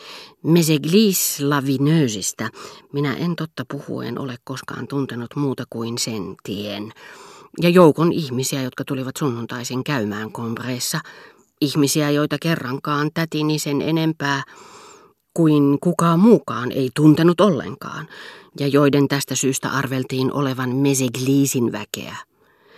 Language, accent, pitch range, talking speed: Finnish, native, 130-165 Hz, 110 wpm